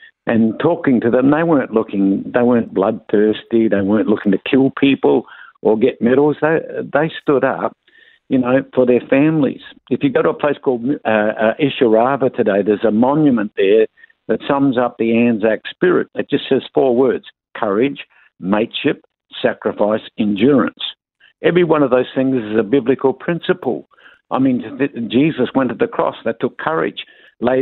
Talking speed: 170 wpm